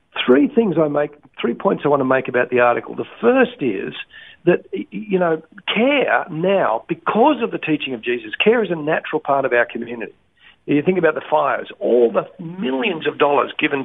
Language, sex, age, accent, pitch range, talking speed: English, male, 50-69, Australian, 135-195 Hz, 200 wpm